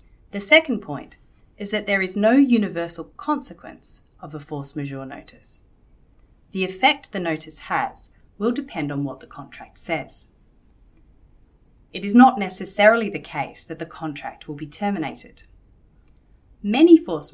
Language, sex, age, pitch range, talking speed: English, female, 30-49, 150-215 Hz, 140 wpm